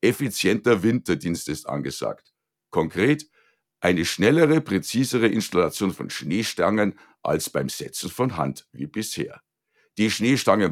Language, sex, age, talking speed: German, male, 60-79, 110 wpm